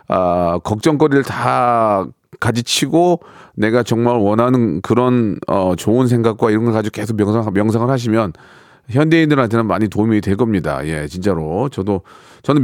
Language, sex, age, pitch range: Korean, male, 40-59, 105-155 Hz